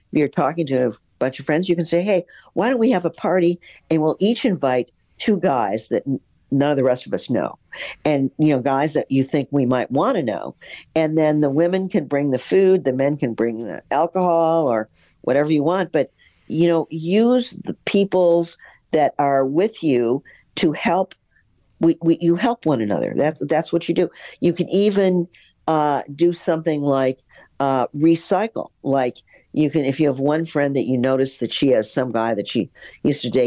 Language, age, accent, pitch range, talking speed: English, 50-69, American, 130-170 Hz, 205 wpm